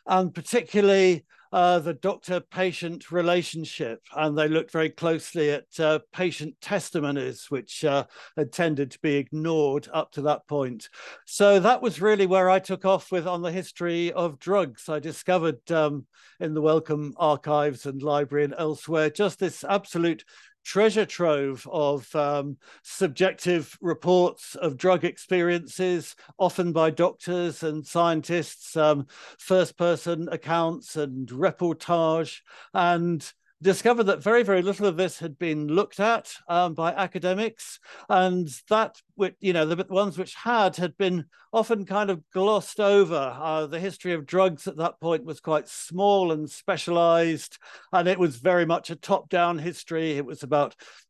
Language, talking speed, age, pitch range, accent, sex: English, 150 wpm, 60-79, 155-185 Hz, British, male